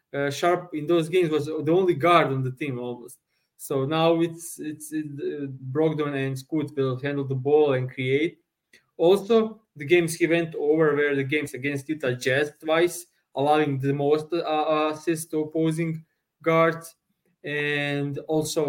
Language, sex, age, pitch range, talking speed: English, male, 20-39, 140-160 Hz, 160 wpm